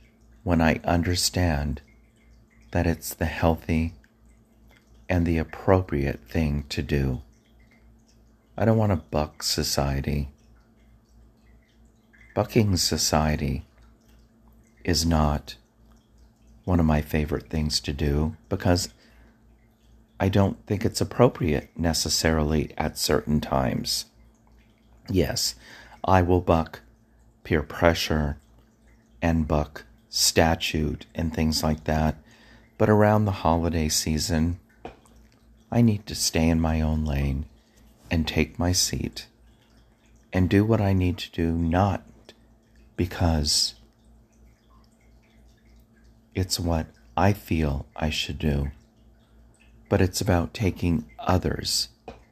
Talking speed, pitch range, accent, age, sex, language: 105 wpm, 80-110 Hz, American, 40-59, male, English